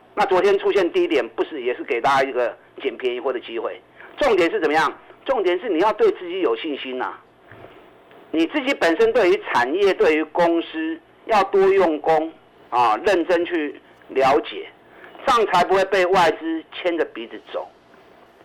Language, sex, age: Chinese, male, 50-69